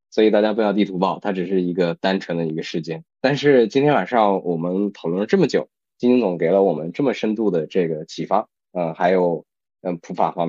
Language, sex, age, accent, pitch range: Chinese, male, 20-39, native, 85-120 Hz